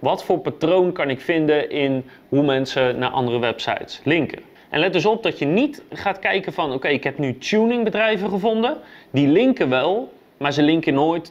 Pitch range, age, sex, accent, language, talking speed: 135-200 Hz, 30-49, male, Dutch, Dutch, 190 wpm